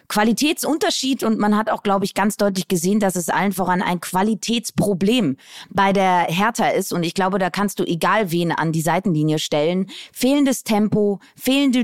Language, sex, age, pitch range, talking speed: German, female, 20-39, 185-225 Hz, 175 wpm